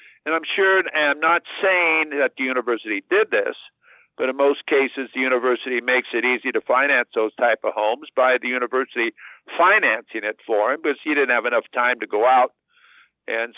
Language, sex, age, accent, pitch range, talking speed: English, male, 60-79, American, 130-175 Hz, 195 wpm